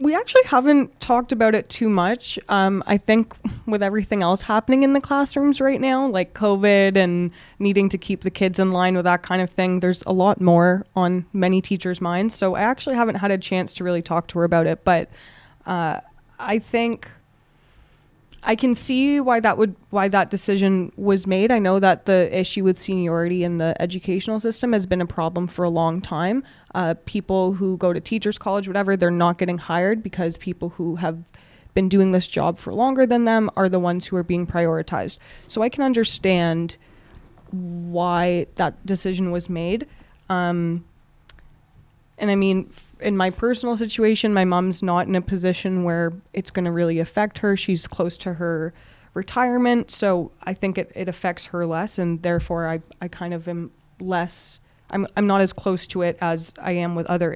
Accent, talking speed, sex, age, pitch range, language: American, 195 wpm, female, 20-39, 175-210 Hz, English